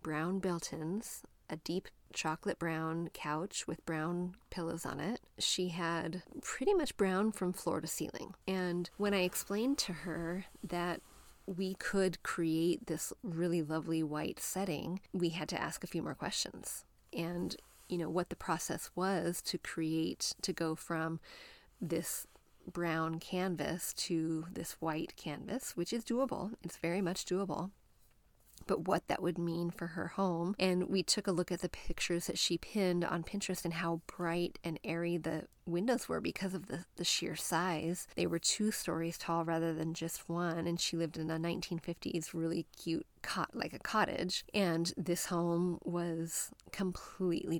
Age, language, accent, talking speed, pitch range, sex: 30-49, English, American, 165 wpm, 165-185 Hz, female